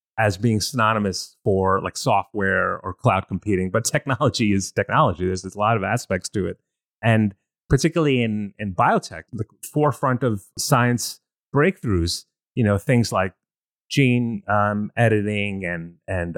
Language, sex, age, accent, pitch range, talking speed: English, male, 30-49, American, 100-120 Hz, 145 wpm